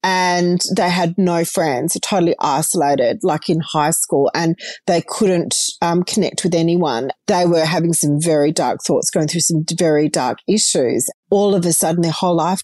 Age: 40-59